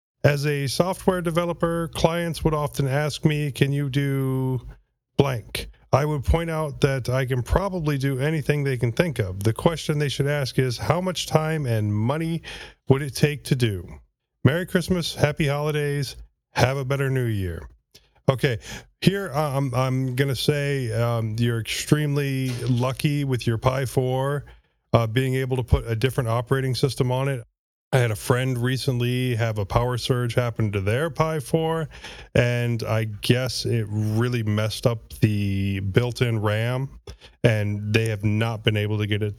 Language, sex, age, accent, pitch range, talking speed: English, male, 40-59, American, 110-145 Hz, 170 wpm